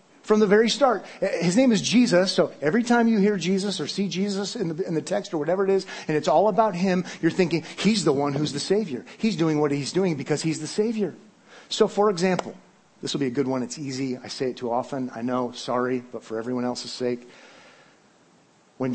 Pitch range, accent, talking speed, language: 145-220 Hz, American, 230 wpm, English